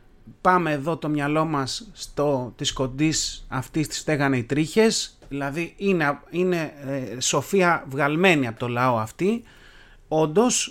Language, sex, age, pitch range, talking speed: Greek, male, 30-49, 125-160 Hz, 125 wpm